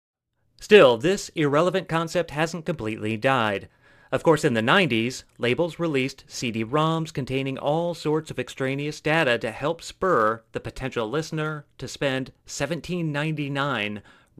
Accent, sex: American, male